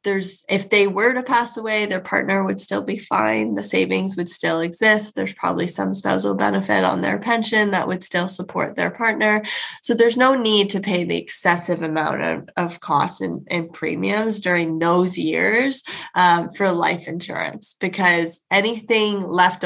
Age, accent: 20-39, American